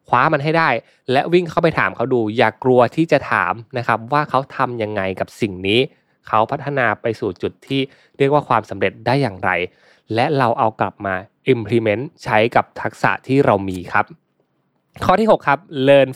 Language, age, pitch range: Thai, 20-39, 110-145 Hz